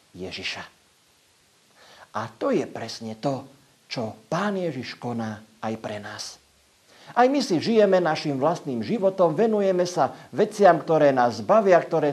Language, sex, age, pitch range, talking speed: Slovak, male, 50-69, 125-180 Hz, 135 wpm